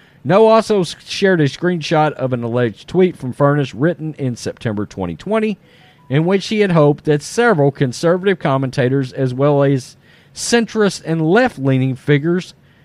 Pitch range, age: 140-195 Hz, 40-59